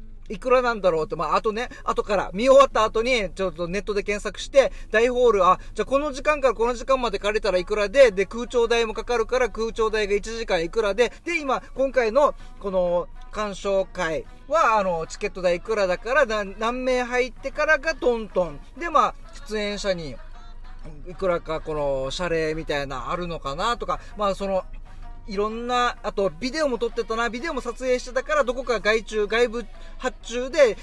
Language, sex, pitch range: Japanese, male, 195-255 Hz